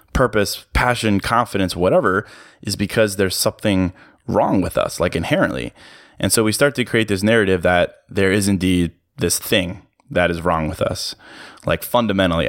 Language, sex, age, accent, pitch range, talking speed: English, male, 20-39, American, 90-105 Hz, 165 wpm